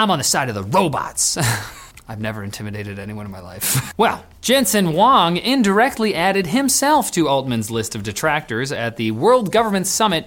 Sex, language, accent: male, English, American